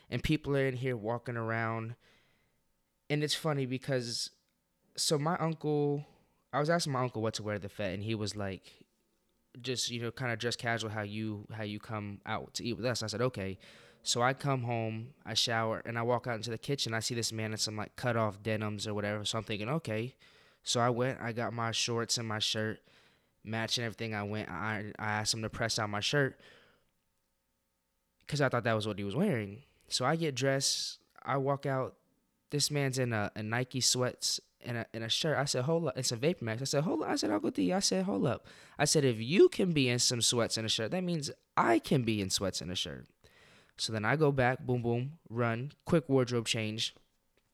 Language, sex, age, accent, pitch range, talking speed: English, male, 20-39, American, 110-135 Hz, 230 wpm